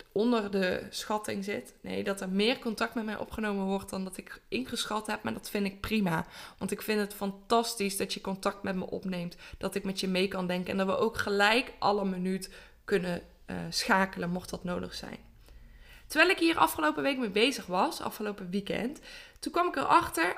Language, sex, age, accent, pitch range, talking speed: Dutch, female, 20-39, Dutch, 190-245 Hz, 205 wpm